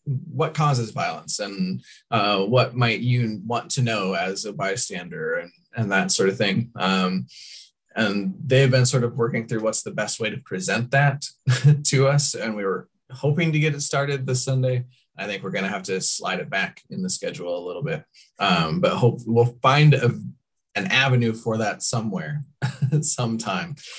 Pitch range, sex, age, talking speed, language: 110-140 Hz, male, 20-39, 190 wpm, English